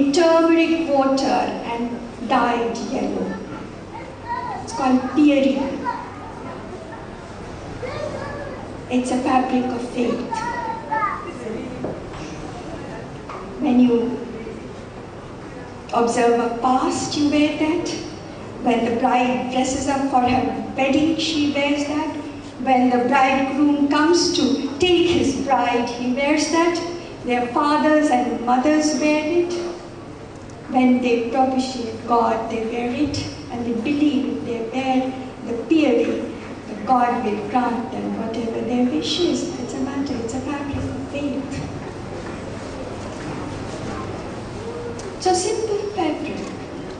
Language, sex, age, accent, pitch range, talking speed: English, female, 50-69, Indian, 245-300 Hz, 105 wpm